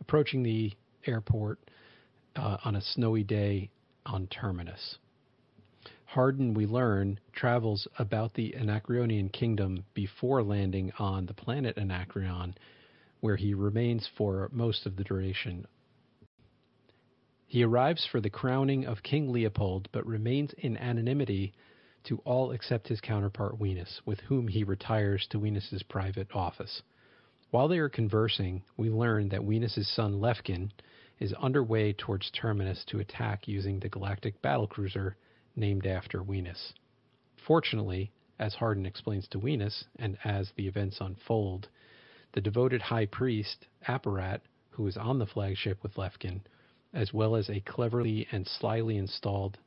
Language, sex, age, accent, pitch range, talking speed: English, male, 40-59, American, 100-120 Hz, 135 wpm